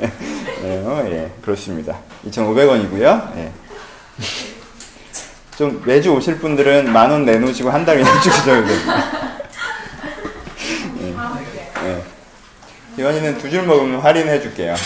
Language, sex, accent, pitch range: Korean, male, native, 105-145 Hz